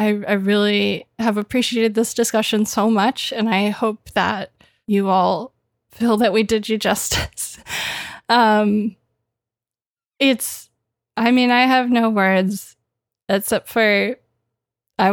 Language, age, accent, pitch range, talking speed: English, 20-39, American, 195-230 Hz, 125 wpm